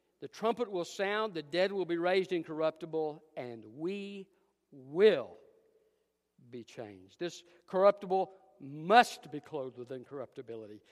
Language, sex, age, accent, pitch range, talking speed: English, male, 60-79, American, 140-200 Hz, 120 wpm